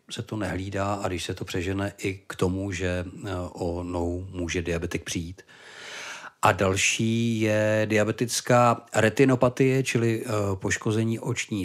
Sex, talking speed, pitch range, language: male, 125 wpm, 90-105 Hz, Czech